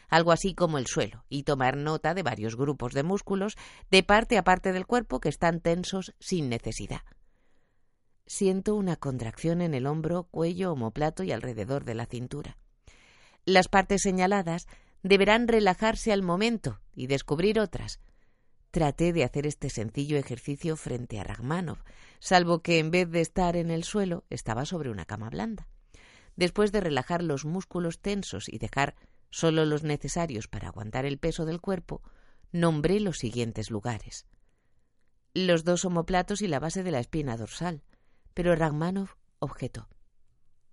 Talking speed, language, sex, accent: 155 wpm, Spanish, female, Spanish